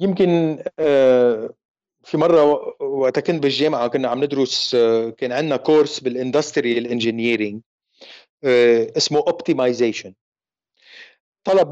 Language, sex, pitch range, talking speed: Arabic, male, 135-175 Hz, 85 wpm